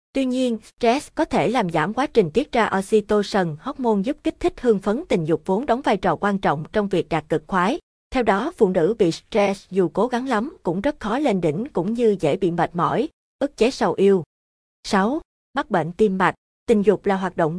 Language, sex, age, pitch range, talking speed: Vietnamese, female, 20-39, 180-235 Hz, 225 wpm